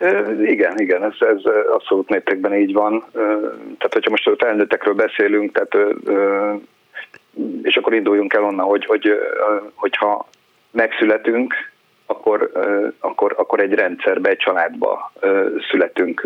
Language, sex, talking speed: Hungarian, male, 120 wpm